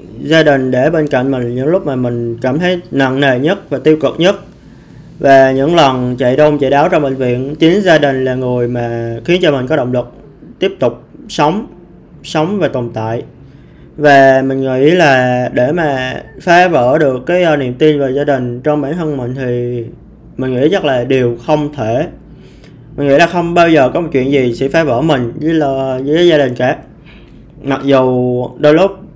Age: 20-39